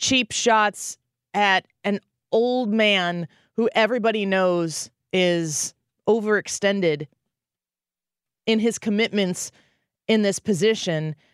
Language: English